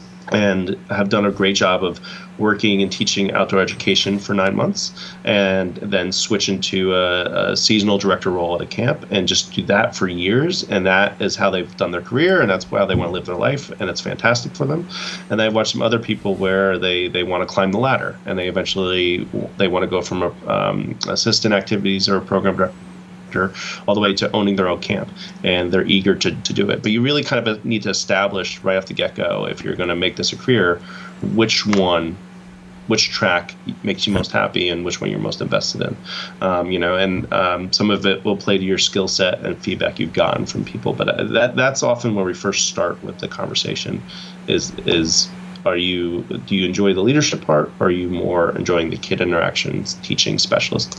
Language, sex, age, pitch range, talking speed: English, male, 30-49, 90-110 Hz, 220 wpm